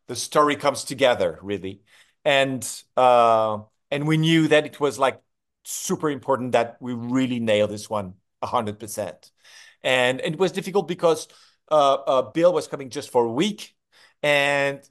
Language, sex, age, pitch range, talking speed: English, male, 40-59, 125-165 Hz, 155 wpm